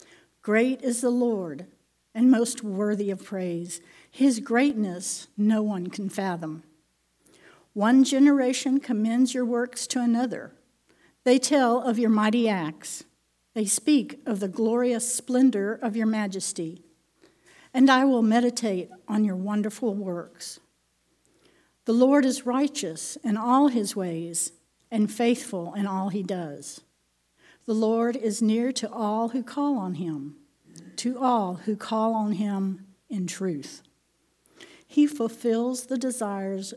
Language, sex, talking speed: English, female, 130 wpm